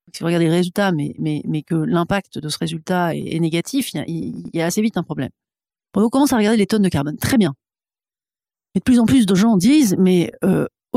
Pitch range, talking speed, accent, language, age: 160-210 Hz, 245 wpm, French, French, 40-59